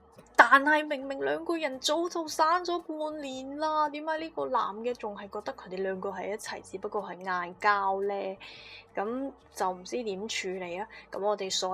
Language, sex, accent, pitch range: Chinese, female, native, 185-230 Hz